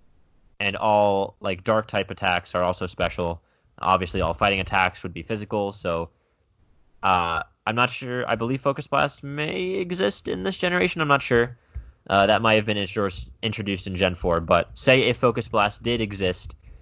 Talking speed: 170 wpm